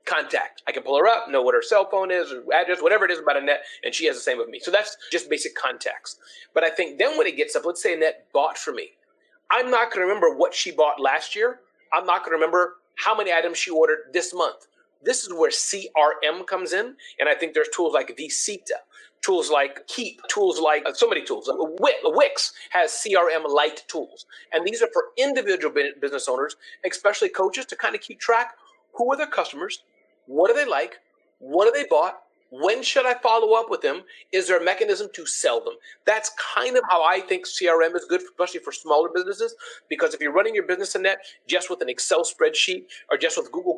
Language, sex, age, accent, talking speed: English, male, 30-49, American, 225 wpm